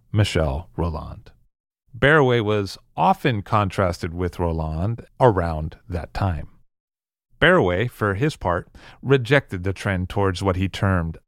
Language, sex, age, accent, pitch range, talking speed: English, male, 40-59, American, 90-125 Hz, 115 wpm